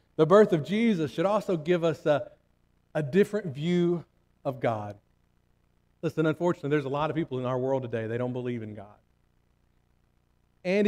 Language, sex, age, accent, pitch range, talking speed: English, male, 40-59, American, 130-180 Hz, 170 wpm